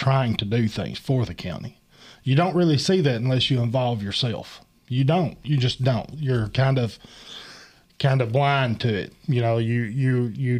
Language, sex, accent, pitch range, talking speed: English, male, American, 120-145 Hz, 190 wpm